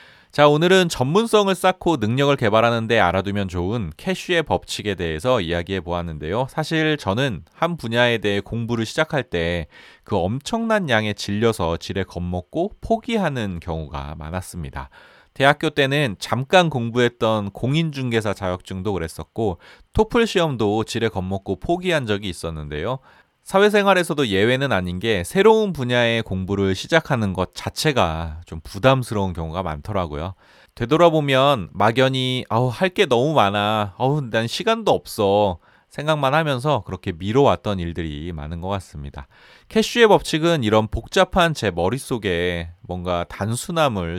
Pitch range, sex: 90-145 Hz, male